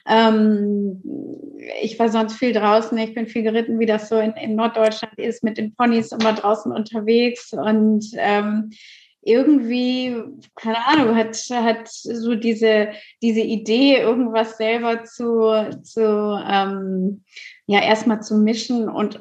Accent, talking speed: German, 135 wpm